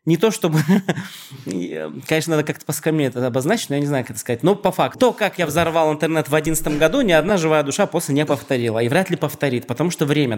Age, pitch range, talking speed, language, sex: 20-39, 130-170 Hz, 235 wpm, Russian, male